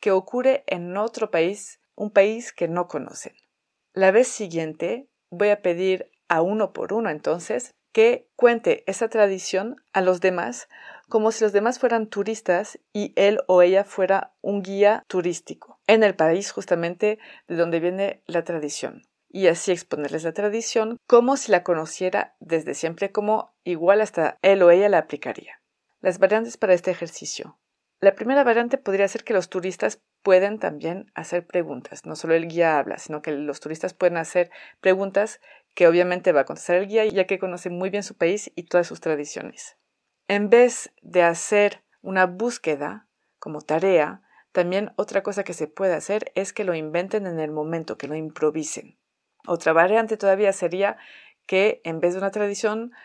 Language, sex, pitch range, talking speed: Spanish, female, 170-210 Hz, 170 wpm